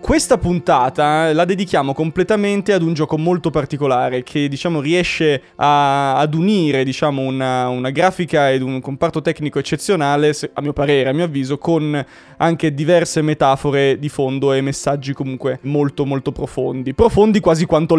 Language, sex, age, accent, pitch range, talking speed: Italian, male, 20-39, native, 135-170 Hz, 155 wpm